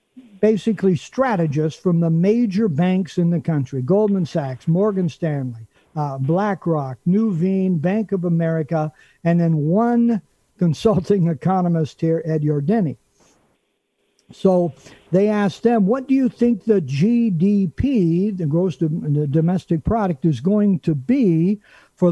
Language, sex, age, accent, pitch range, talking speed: English, male, 60-79, American, 160-200 Hz, 130 wpm